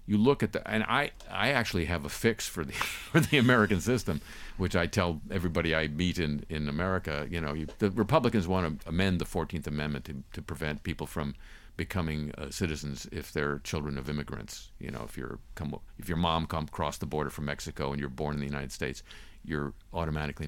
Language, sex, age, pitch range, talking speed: English, male, 50-69, 75-100 Hz, 210 wpm